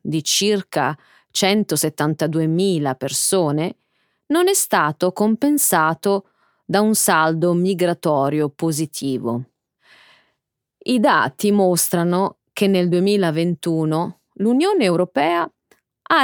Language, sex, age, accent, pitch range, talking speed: Italian, female, 30-49, native, 165-245 Hz, 80 wpm